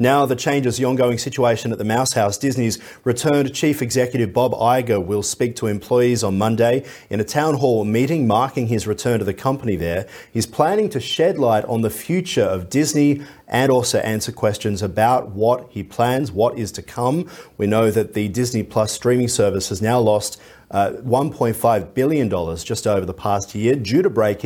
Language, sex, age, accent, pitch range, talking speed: English, male, 40-59, Australian, 100-125 Hz, 195 wpm